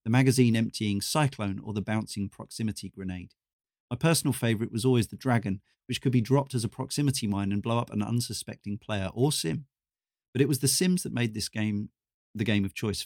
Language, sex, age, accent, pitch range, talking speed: English, male, 40-59, British, 105-130 Hz, 205 wpm